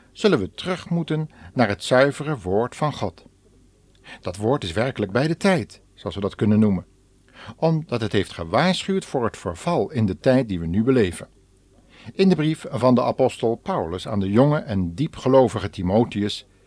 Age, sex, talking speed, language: 50-69, male, 175 wpm, Dutch